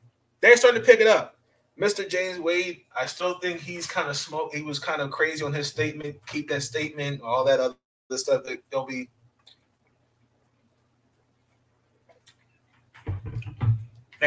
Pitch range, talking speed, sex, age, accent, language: 120-170 Hz, 145 wpm, male, 20-39, American, English